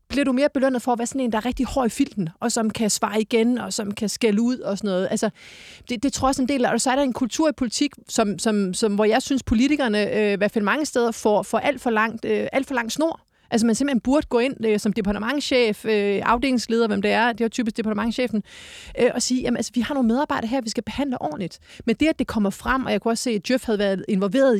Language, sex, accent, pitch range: Danish, female, native, 205-250 Hz